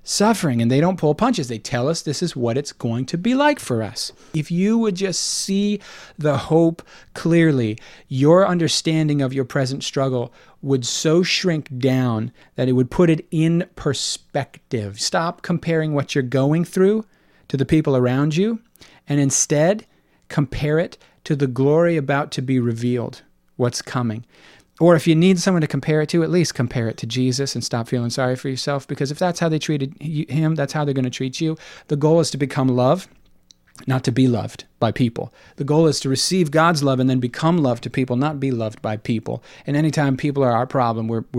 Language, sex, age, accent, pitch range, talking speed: English, male, 40-59, American, 125-160 Hz, 200 wpm